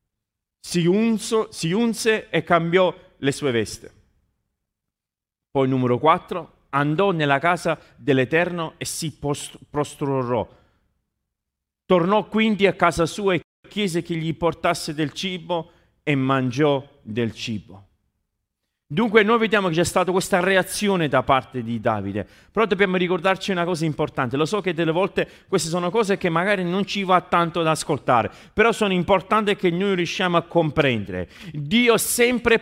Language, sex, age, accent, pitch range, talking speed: Italian, male, 40-59, native, 145-195 Hz, 145 wpm